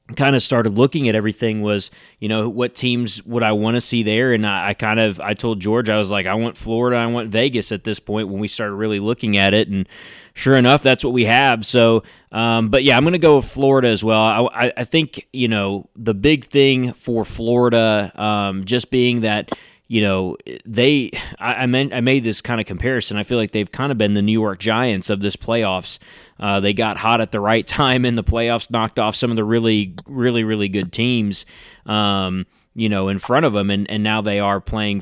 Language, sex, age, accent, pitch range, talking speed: English, male, 20-39, American, 105-120 Hz, 235 wpm